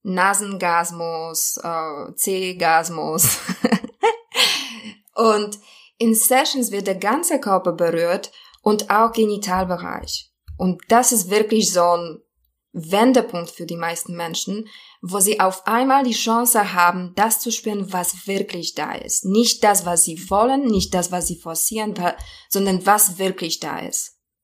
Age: 20-39